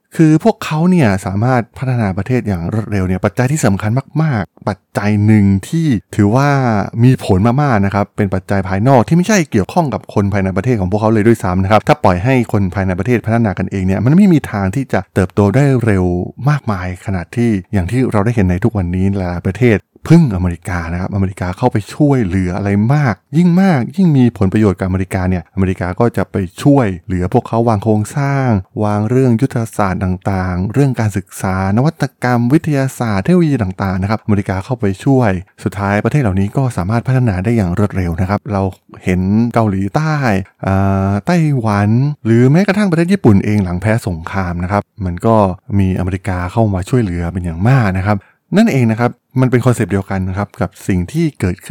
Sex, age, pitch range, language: male, 20-39, 95-125 Hz, Thai